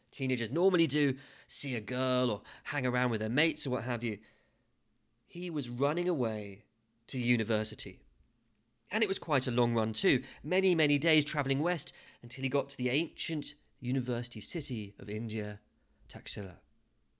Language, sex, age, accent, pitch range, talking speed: English, male, 30-49, British, 115-150 Hz, 160 wpm